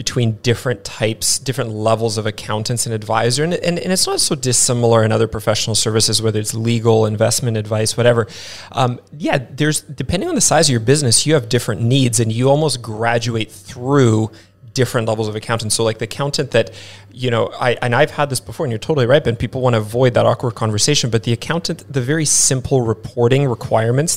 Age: 30-49